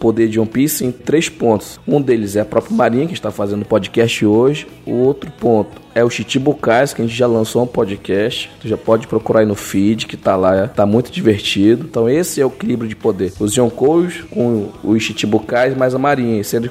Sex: male